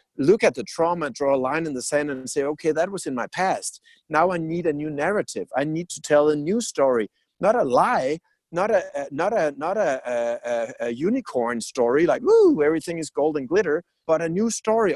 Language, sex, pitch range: English, male, 135-185 Hz